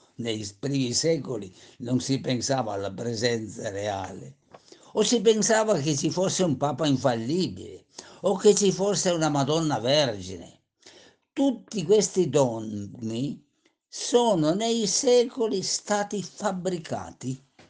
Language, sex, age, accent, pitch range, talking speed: Italian, male, 60-79, native, 125-190 Hz, 110 wpm